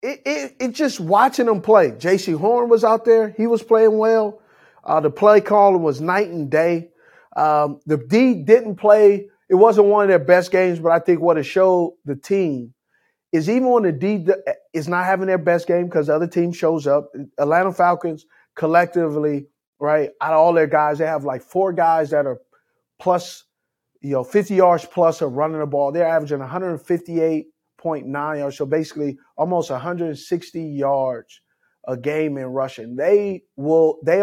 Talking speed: 175 wpm